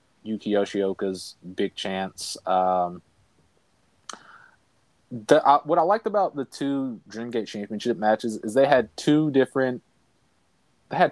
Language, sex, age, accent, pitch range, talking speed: English, male, 20-39, American, 95-125 Hz, 125 wpm